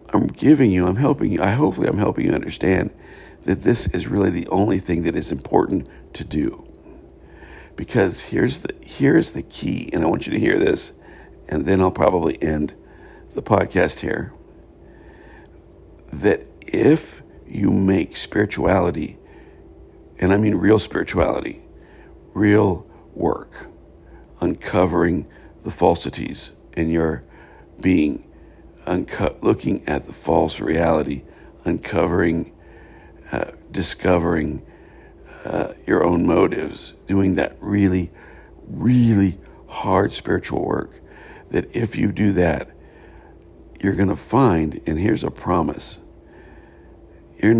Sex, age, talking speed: male, 60-79, 120 wpm